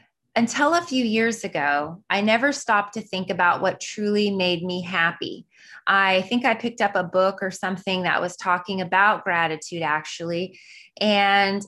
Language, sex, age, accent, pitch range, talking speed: English, female, 20-39, American, 175-215 Hz, 165 wpm